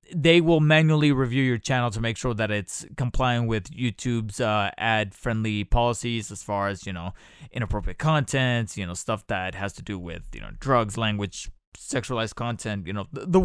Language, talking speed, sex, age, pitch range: English, 185 wpm, male, 20-39, 110-140 Hz